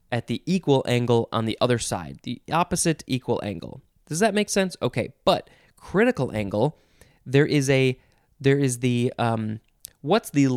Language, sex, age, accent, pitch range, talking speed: English, male, 20-39, American, 120-165 Hz, 165 wpm